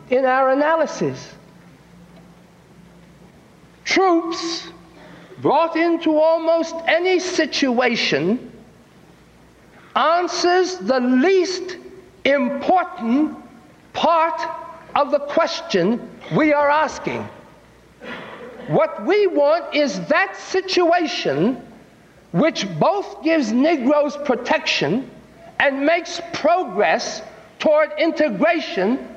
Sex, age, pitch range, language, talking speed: male, 60-79, 265-345 Hz, English, 75 wpm